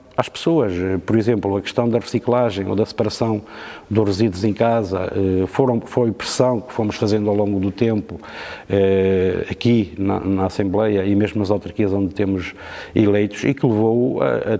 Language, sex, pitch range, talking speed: Portuguese, male, 100-120 Hz, 175 wpm